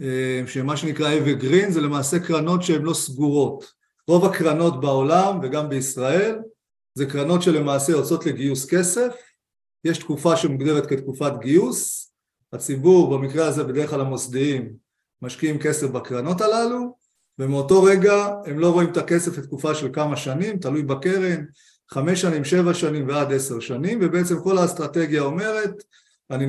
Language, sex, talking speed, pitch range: Hebrew, male, 140 wpm, 135-175 Hz